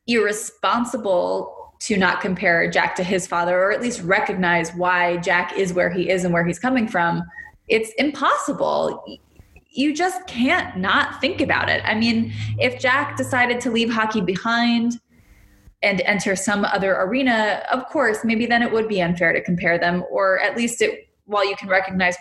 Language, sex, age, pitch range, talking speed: English, female, 20-39, 185-255 Hz, 175 wpm